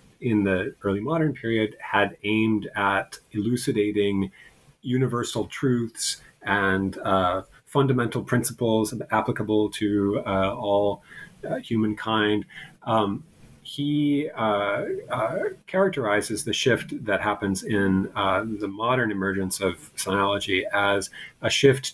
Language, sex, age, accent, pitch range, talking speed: English, male, 30-49, American, 100-135 Hz, 110 wpm